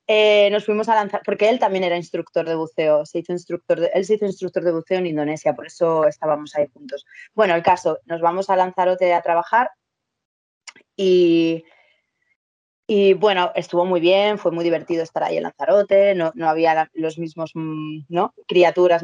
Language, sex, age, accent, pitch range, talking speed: Spanish, female, 20-39, Spanish, 165-210 Hz, 165 wpm